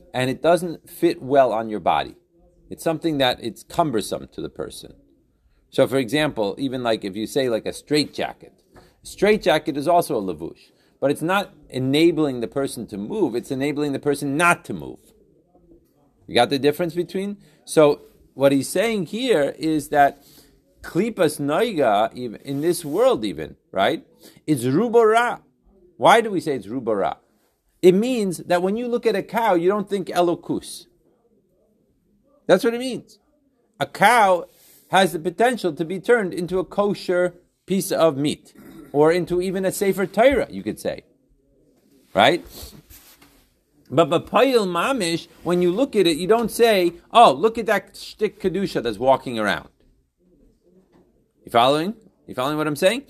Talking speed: 165 wpm